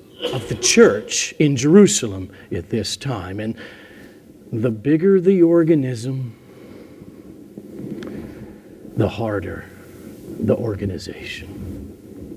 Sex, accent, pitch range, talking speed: male, American, 115-175 Hz, 80 wpm